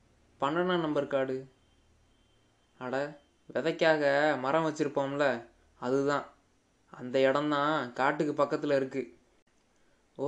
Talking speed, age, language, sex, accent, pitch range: 75 wpm, 20-39, Tamil, male, native, 135-160 Hz